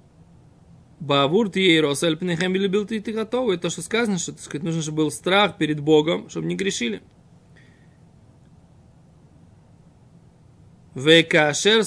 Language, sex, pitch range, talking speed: Russian, male, 150-195 Hz, 115 wpm